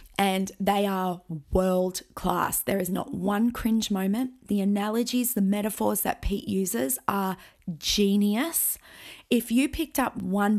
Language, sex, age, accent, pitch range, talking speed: English, female, 20-39, Australian, 195-220 Hz, 140 wpm